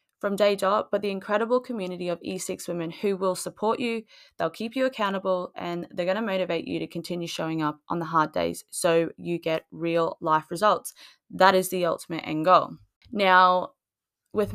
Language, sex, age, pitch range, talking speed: English, female, 20-39, 170-200 Hz, 190 wpm